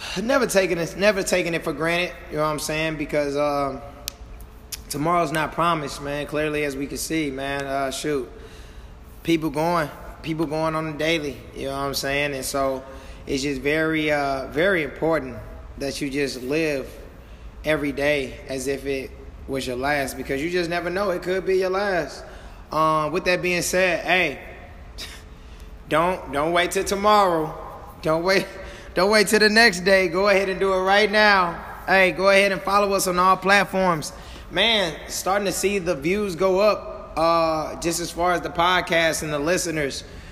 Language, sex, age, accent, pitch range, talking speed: English, male, 20-39, American, 145-180 Hz, 180 wpm